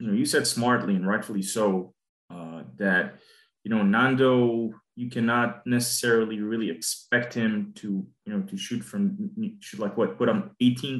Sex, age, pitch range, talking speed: male, 20-39, 115-150 Hz, 170 wpm